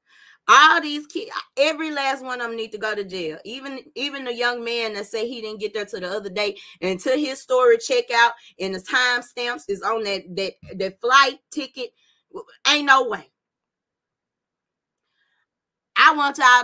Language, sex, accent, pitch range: English, female, American, 190-245 Hz